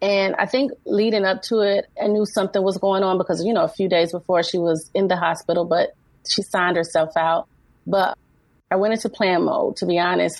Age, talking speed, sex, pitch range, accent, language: 30-49, 225 wpm, female, 175-200 Hz, American, English